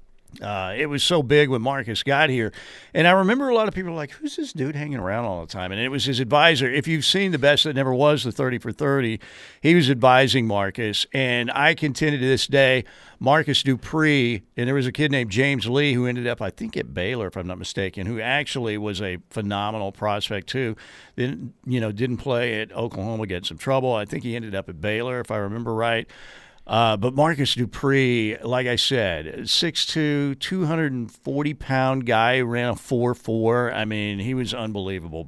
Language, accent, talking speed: English, American, 205 wpm